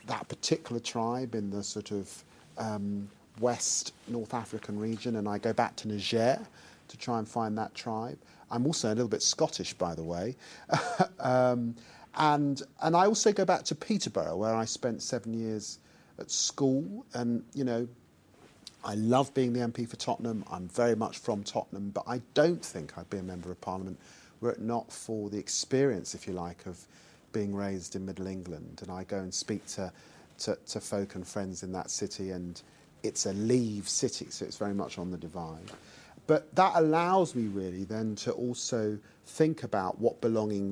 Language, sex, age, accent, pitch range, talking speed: English, male, 40-59, British, 100-125 Hz, 185 wpm